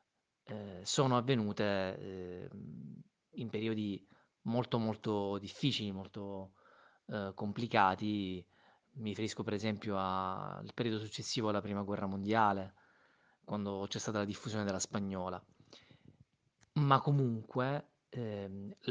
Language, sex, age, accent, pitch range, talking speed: English, male, 30-49, Italian, 100-125 Hz, 100 wpm